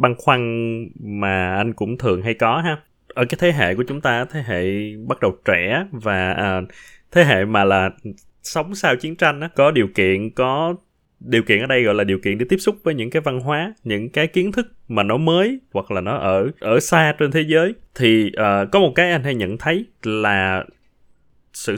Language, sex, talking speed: Vietnamese, male, 210 wpm